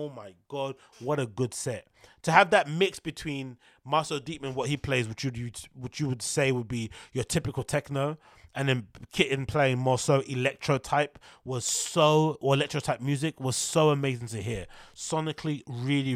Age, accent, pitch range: 30-49, British, 130-155 Hz